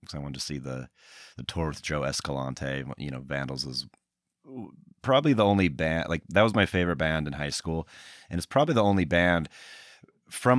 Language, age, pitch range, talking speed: English, 30-49, 75-90 Hz, 200 wpm